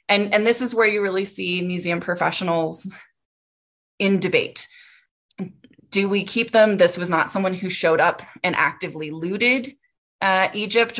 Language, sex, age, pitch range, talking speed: English, female, 20-39, 180-235 Hz, 155 wpm